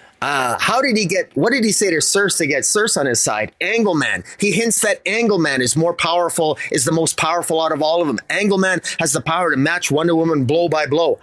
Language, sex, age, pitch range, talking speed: English, male, 30-49, 160-205 Hz, 240 wpm